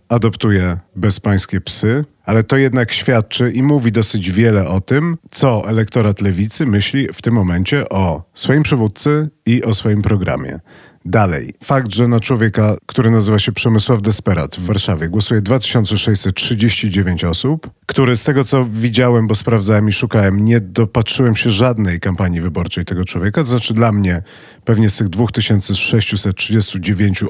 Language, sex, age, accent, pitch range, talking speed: Polish, male, 40-59, native, 95-120 Hz, 145 wpm